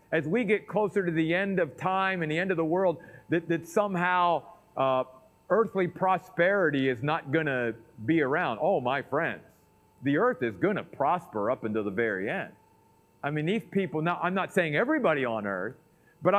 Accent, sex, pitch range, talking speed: American, male, 140-190 Hz, 195 wpm